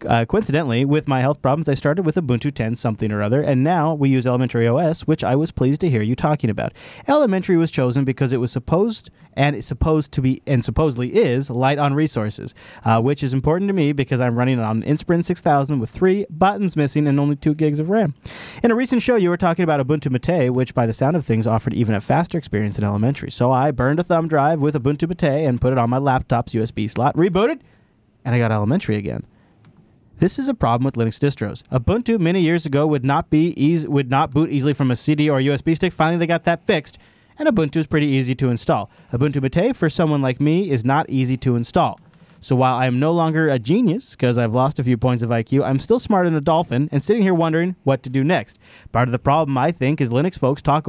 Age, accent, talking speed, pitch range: 30-49, American, 240 wpm, 125-160 Hz